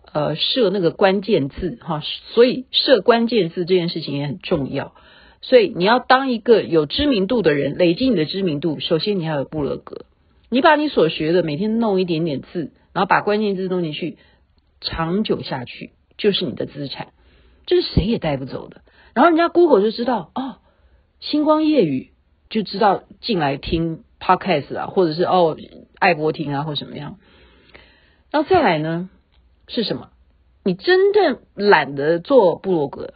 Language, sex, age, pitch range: Chinese, female, 50-69, 165-255 Hz